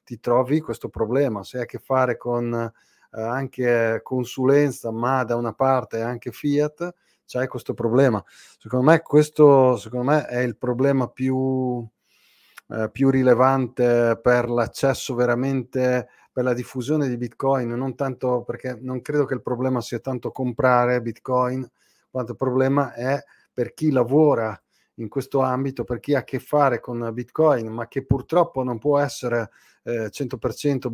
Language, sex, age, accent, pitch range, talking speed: Italian, male, 30-49, native, 120-130 Hz, 155 wpm